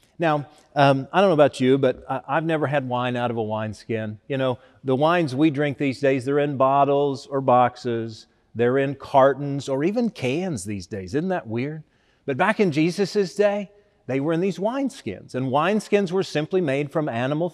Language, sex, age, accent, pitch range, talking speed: English, male, 40-59, American, 125-175 Hz, 195 wpm